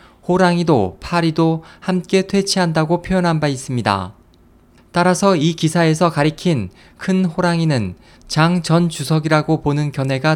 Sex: male